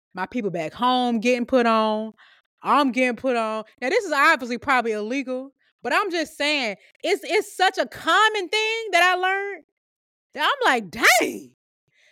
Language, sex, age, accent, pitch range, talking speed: English, female, 20-39, American, 215-300 Hz, 170 wpm